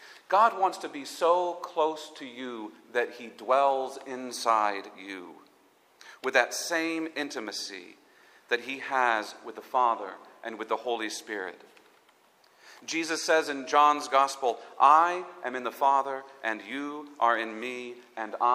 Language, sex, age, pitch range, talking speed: English, male, 40-59, 105-140 Hz, 140 wpm